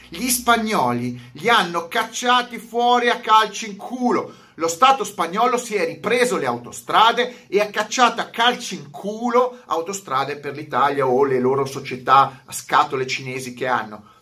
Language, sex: Italian, male